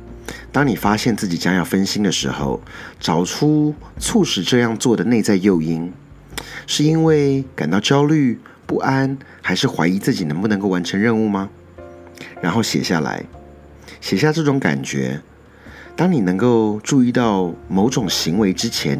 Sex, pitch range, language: male, 85-115 Hz, Chinese